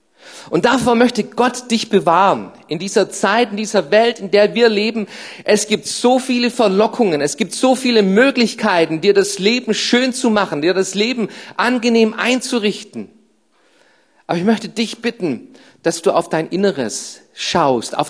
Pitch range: 185-230 Hz